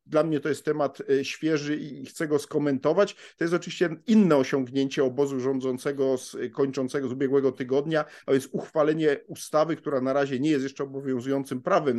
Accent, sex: native, male